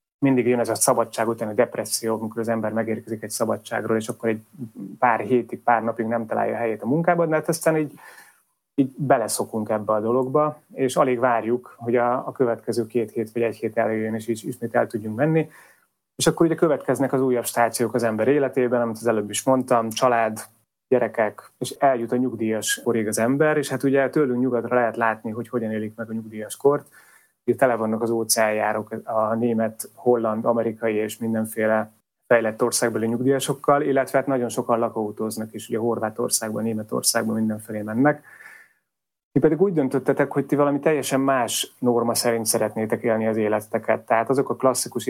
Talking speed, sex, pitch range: 180 wpm, male, 110-130 Hz